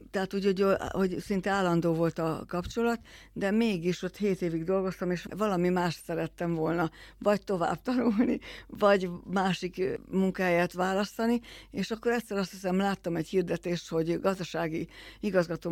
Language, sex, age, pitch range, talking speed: Hungarian, female, 60-79, 165-190 Hz, 140 wpm